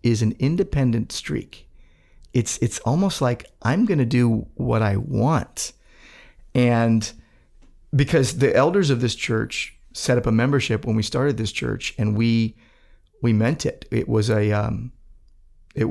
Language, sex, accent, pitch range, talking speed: English, male, American, 110-135 Hz, 150 wpm